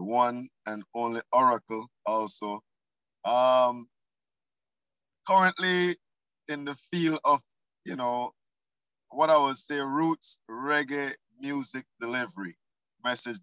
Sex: male